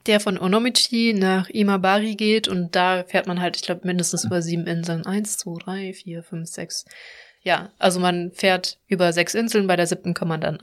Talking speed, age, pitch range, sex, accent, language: 205 wpm, 20-39, 170-190 Hz, female, German, German